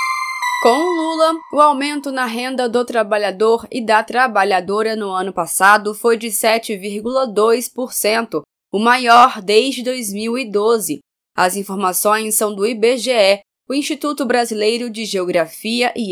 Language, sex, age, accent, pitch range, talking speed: Portuguese, female, 20-39, Brazilian, 205-255 Hz, 110 wpm